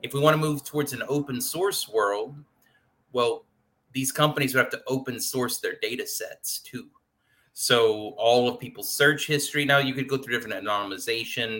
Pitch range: 120-150 Hz